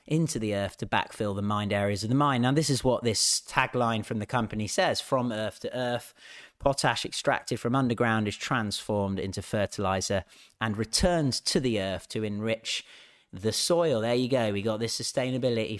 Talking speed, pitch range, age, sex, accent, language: 185 wpm, 105-135 Hz, 30-49, male, British, English